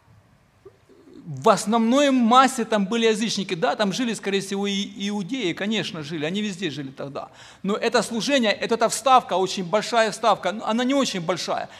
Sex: male